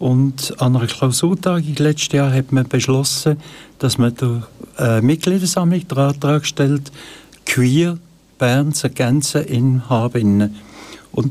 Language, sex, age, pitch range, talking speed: German, male, 60-79, 125-155 Hz, 115 wpm